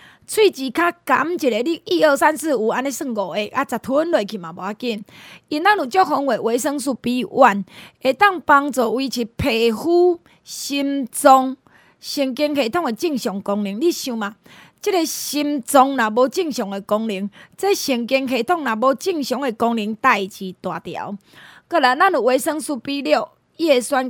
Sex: female